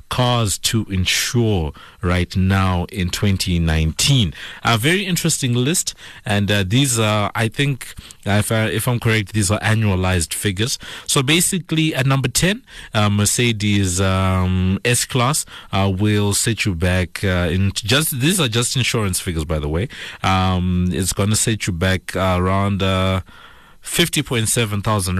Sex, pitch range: male, 90-120 Hz